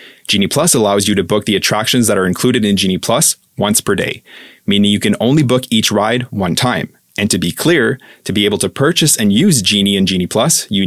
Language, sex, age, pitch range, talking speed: English, male, 20-39, 100-125 Hz, 230 wpm